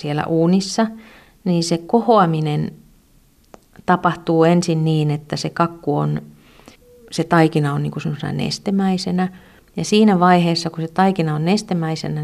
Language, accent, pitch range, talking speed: Finnish, native, 150-180 Hz, 125 wpm